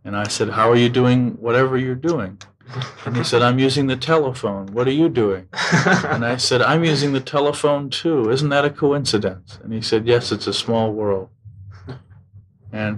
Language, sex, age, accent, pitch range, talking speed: English, male, 40-59, American, 100-120 Hz, 195 wpm